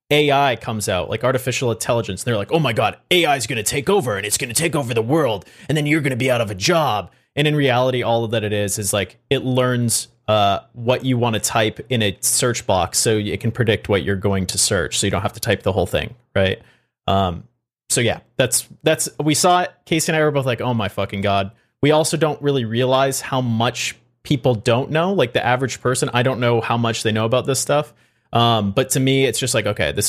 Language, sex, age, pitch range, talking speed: English, male, 30-49, 110-130 Hz, 255 wpm